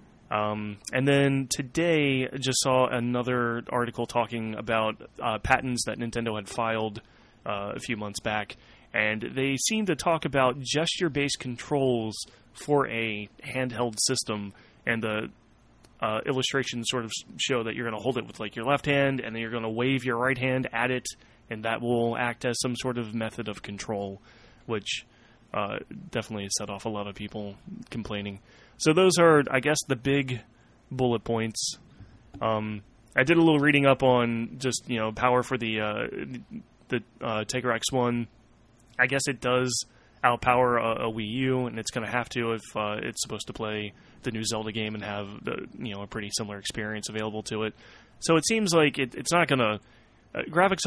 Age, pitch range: 20-39, 110-130 Hz